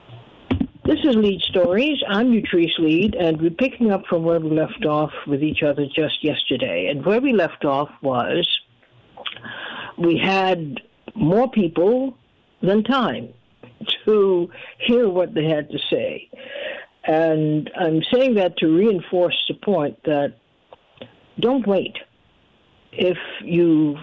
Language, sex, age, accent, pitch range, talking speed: English, female, 60-79, American, 160-210 Hz, 130 wpm